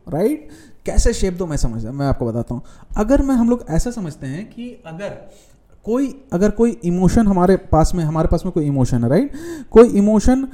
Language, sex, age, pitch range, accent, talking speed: Hindi, male, 30-49, 145-205 Hz, native, 215 wpm